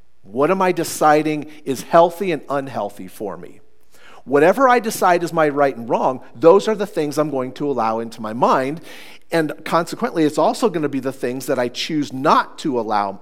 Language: English